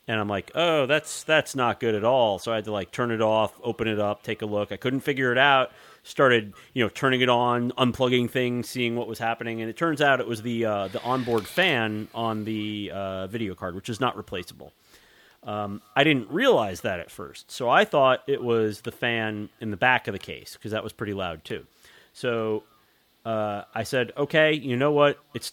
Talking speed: 225 wpm